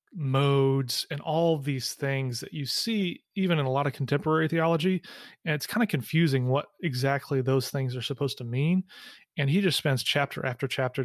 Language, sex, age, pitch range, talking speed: English, male, 30-49, 130-145 Hz, 195 wpm